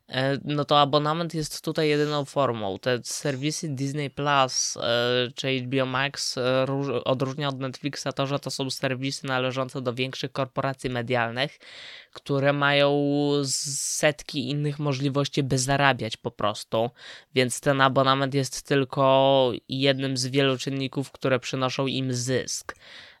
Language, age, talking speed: Polish, 20-39, 125 wpm